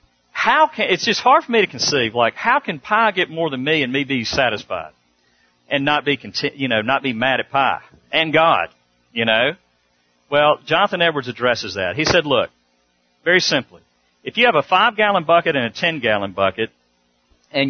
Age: 50-69